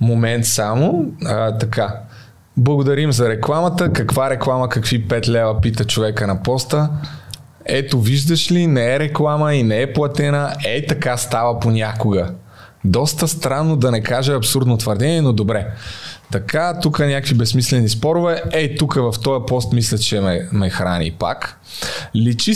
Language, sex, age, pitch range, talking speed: Bulgarian, male, 20-39, 115-150 Hz, 150 wpm